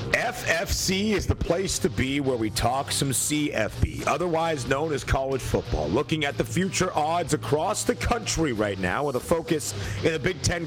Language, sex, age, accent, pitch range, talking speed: English, male, 40-59, American, 110-170 Hz, 185 wpm